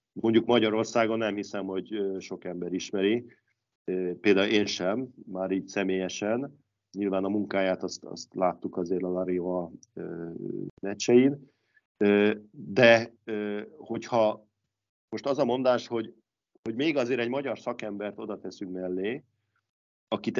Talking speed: 120 wpm